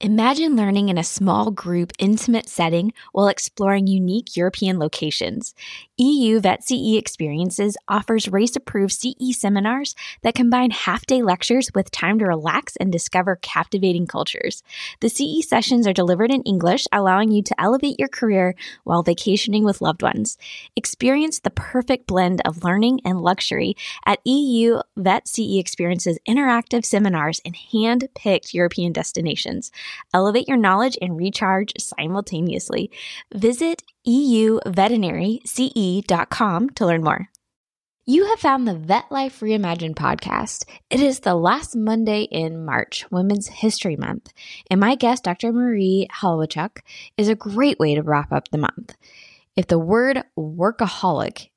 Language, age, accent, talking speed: English, 10-29, American, 135 wpm